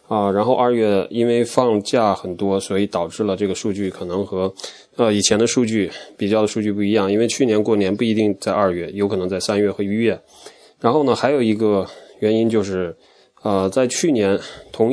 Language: Chinese